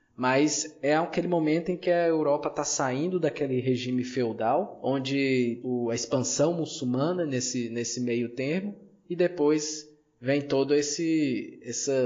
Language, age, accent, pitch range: Portuguese, 20-39, Brazilian, 130-165 Hz